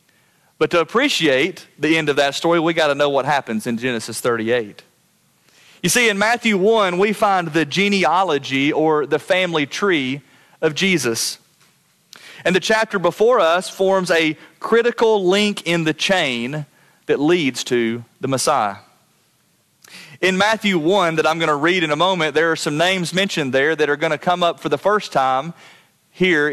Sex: male